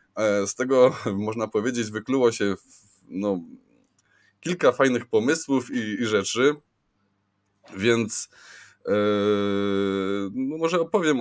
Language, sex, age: Polish, male, 20-39